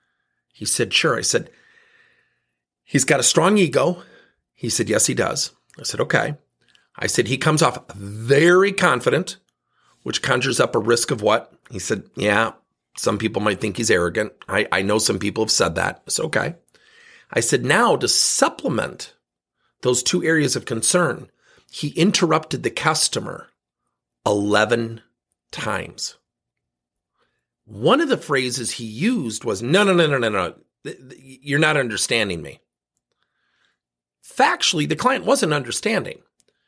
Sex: male